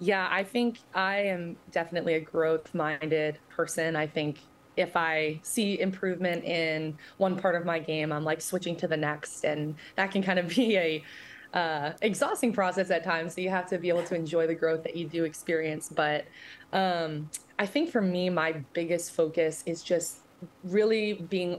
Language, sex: English, female